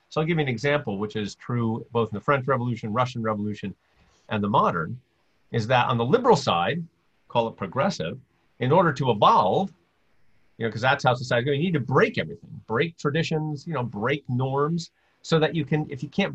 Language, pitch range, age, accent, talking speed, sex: English, 115-155 Hz, 40-59, American, 215 wpm, male